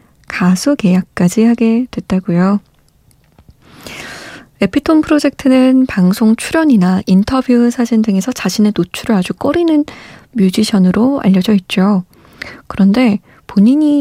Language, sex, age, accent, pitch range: Korean, female, 20-39, native, 190-240 Hz